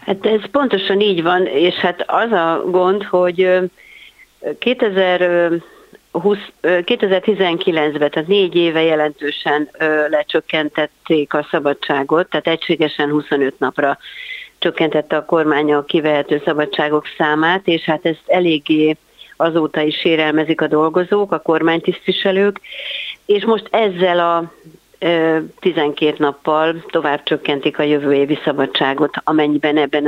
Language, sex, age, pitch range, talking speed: Hungarian, female, 60-79, 150-185 Hz, 110 wpm